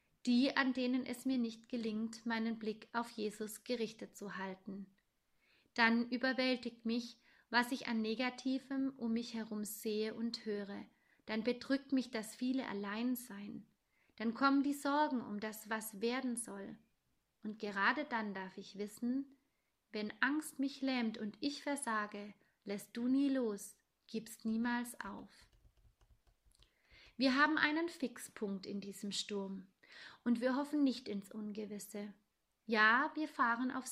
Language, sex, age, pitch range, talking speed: German, female, 30-49, 215-255 Hz, 140 wpm